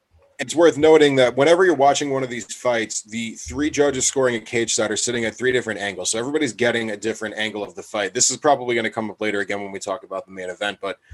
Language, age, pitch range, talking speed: English, 20-39, 110-130 Hz, 270 wpm